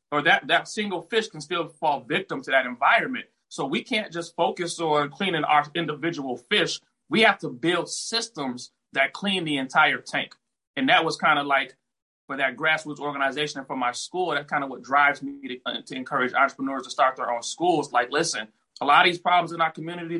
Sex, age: male, 30-49